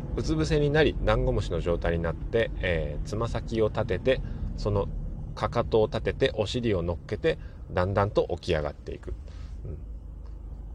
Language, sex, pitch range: Japanese, male, 75-110 Hz